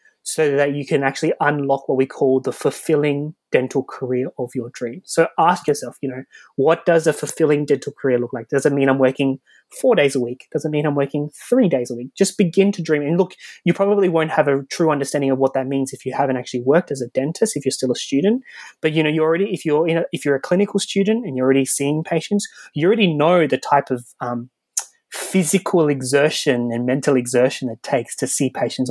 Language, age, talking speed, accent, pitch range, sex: English, 20-39, 235 wpm, Australian, 130-165 Hz, male